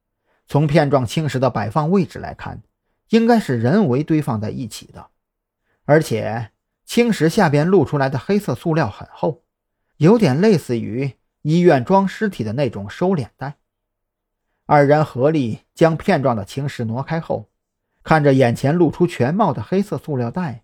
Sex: male